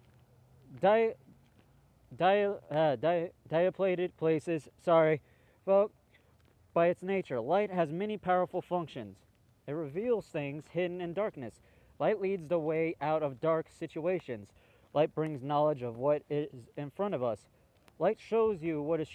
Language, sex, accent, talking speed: English, male, American, 130 wpm